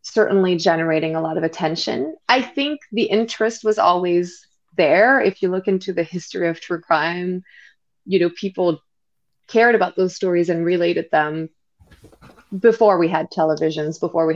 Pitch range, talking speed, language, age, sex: 165-210 Hz, 160 wpm, English, 20-39, female